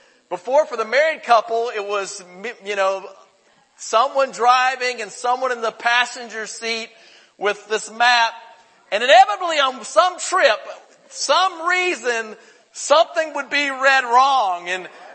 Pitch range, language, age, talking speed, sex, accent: 200-270 Hz, English, 40-59, 130 wpm, male, American